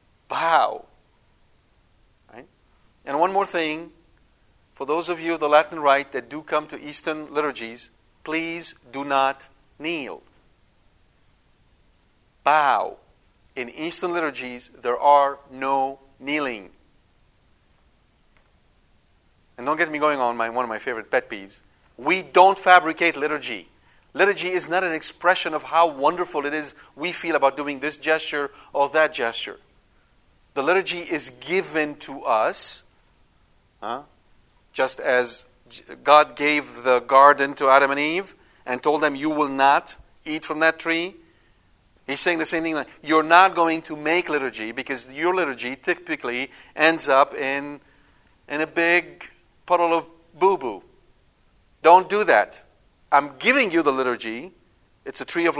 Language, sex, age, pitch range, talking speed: English, male, 40-59, 130-165 Hz, 140 wpm